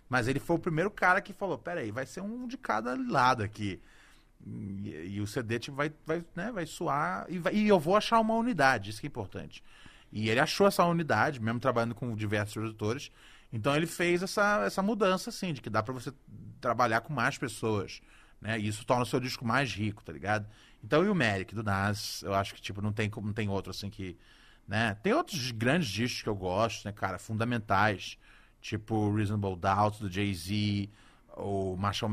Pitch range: 105-155 Hz